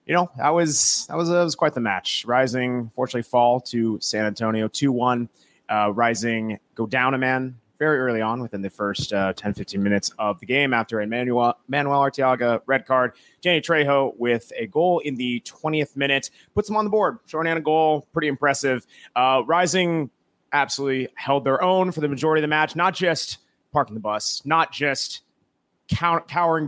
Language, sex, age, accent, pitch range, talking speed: English, male, 30-49, American, 120-150 Hz, 180 wpm